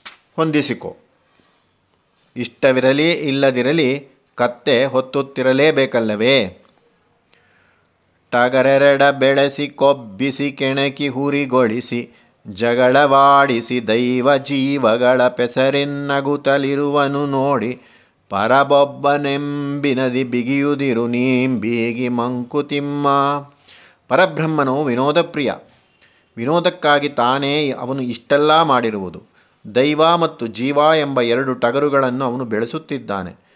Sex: male